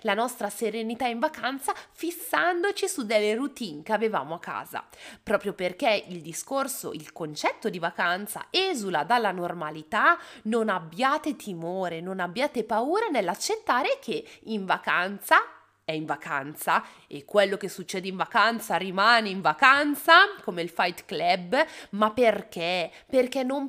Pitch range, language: 185-270 Hz, Italian